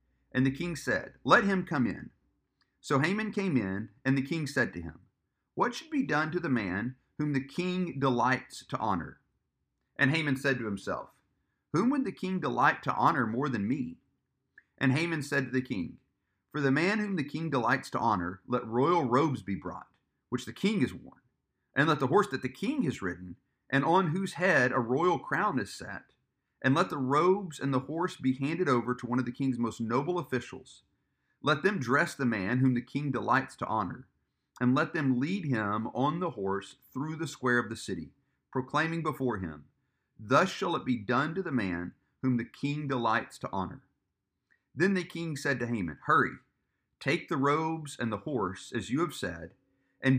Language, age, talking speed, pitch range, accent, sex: English, 40-59, 200 wpm, 120-155 Hz, American, male